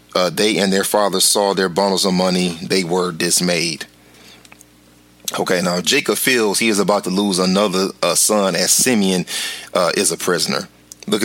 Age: 30-49